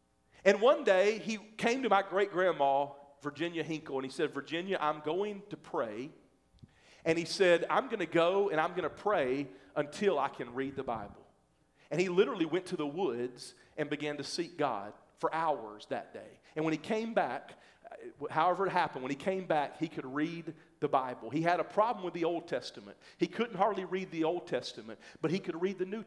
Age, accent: 40-59, American